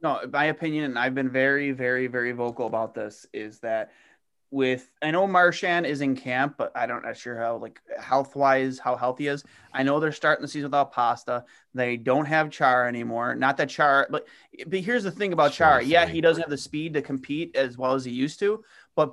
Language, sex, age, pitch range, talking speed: English, male, 20-39, 130-160 Hz, 225 wpm